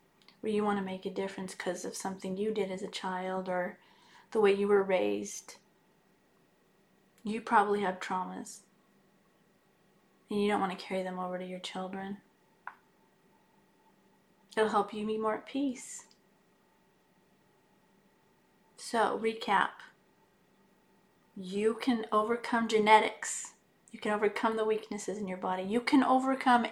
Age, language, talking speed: 30-49, English, 135 wpm